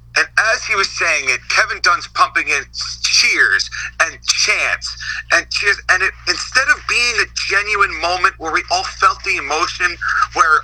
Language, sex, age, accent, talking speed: English, male, 40-59, American, 165 wpm